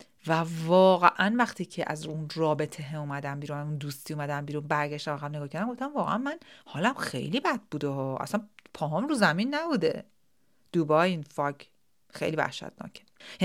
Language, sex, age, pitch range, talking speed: Persian, female, 40-59, 155-220 Hz, 160 wpm